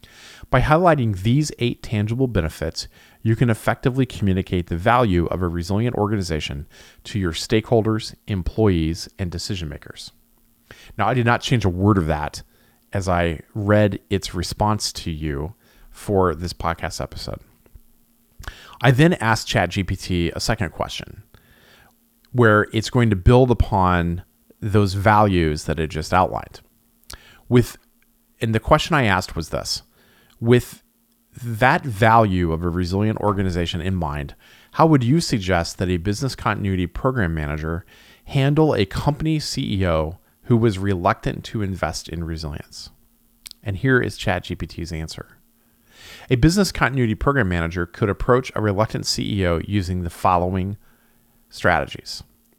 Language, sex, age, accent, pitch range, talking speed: English, male, 40-59, American, 85-120 Hz, 135 wpm